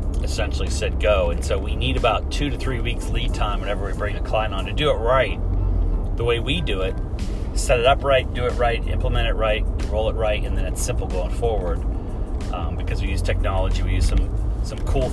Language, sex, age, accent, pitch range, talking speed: English, male, 30-49, American, 90-105 Hz, 230 wpm